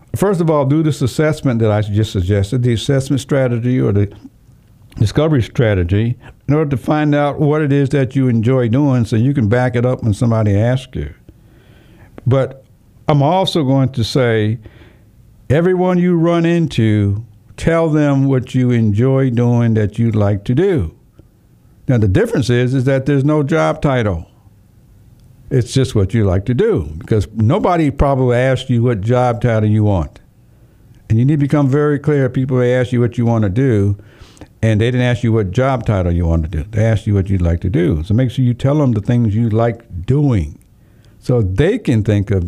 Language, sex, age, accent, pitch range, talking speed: English, male, 60-79, American, 105-135 Hz, 195 wpm